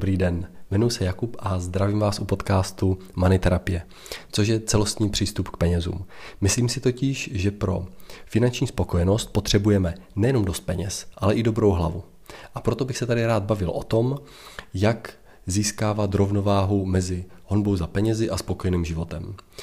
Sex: male